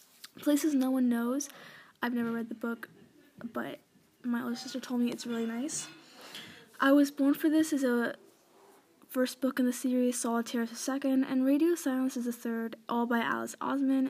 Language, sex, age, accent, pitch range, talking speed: English, female, 10-29, American, 235-280 Hz, 185 wpm